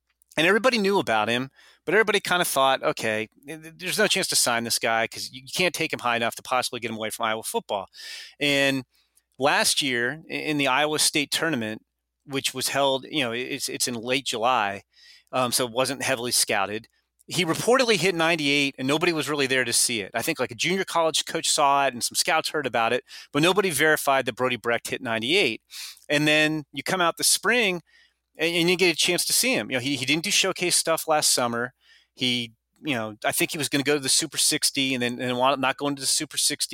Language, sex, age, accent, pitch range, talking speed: English, male, 30-49, American, 120-160 Hz, 230 wpm